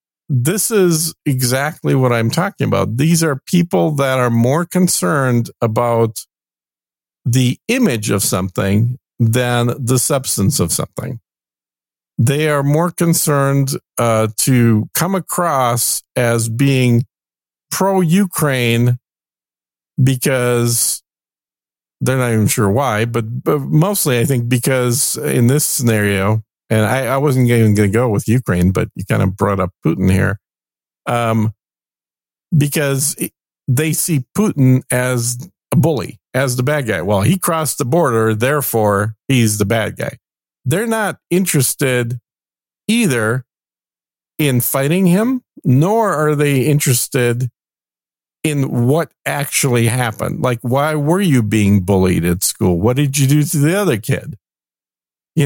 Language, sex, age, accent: English, male, 50-69, American